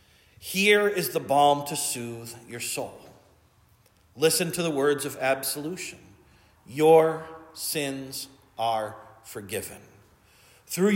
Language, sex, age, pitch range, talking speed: English, male, 50-69, 120-170 Hz, 105 wpm